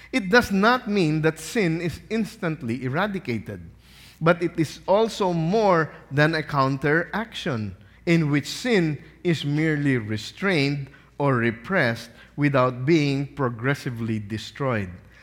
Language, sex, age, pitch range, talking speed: English, male, 50-69, 120-170 Hz, 115 wpm